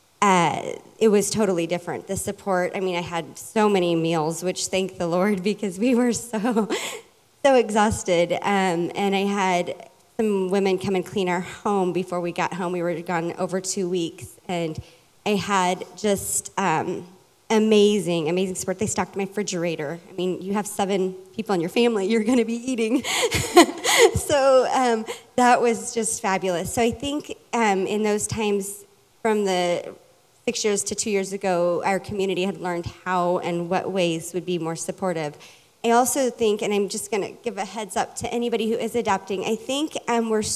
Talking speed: 185 wpm